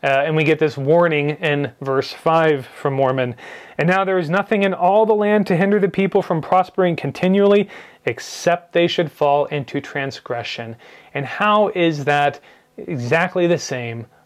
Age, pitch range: 30-49, 140-175 Hz